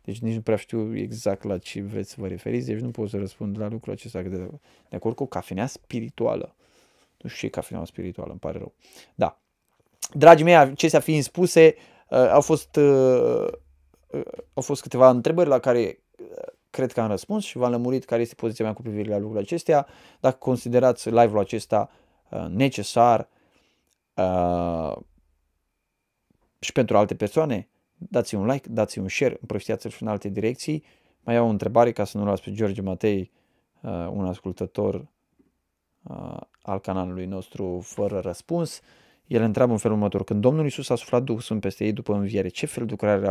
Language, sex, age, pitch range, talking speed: Romanian, male, 20-39, 100-145 Hz, 165 wpm